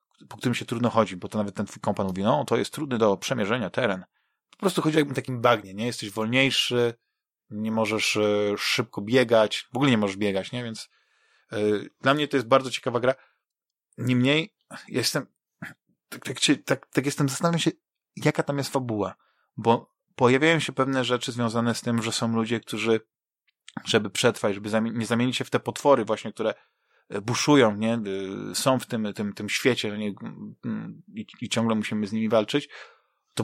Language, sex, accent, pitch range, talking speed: Polish, male, native, 110-135 Hz, 180 wpm